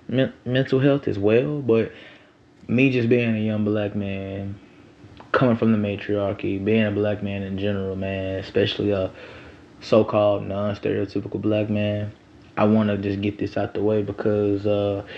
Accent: American